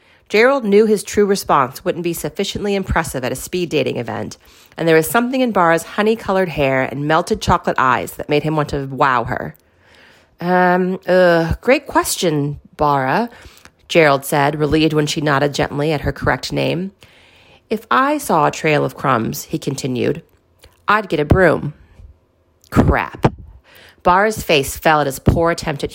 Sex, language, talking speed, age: female, English, 160 wpm, 40-59